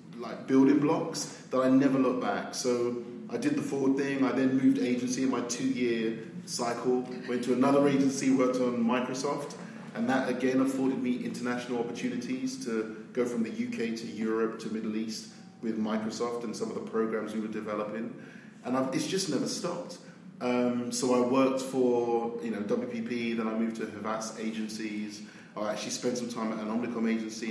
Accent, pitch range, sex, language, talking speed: British, 110-130 Hz, male, English, 190 wpm